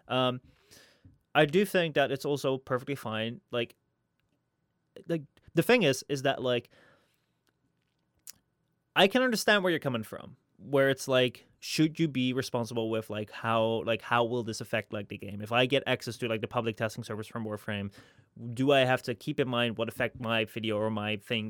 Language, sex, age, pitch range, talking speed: English, male, 20-39, 115-140 Hz, 190 wpm